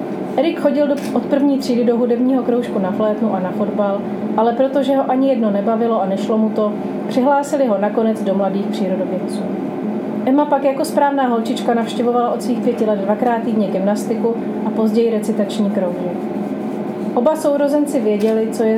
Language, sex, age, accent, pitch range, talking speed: Czech, female, 30-49, native, 210-255 Hz, 165 wpm